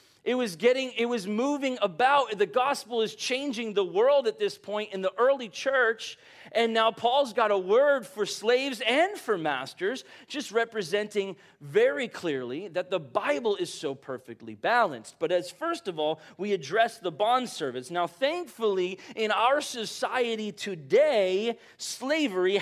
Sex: male